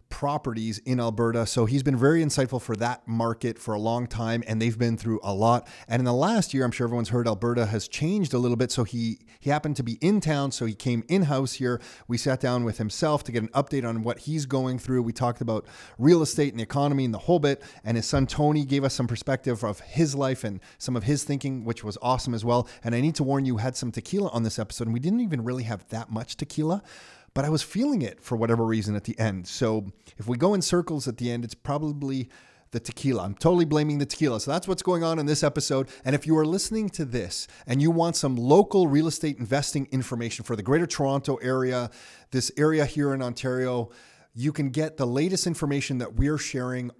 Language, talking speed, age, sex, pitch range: English, 240 wpm, 30-49, male, 115-145 Hz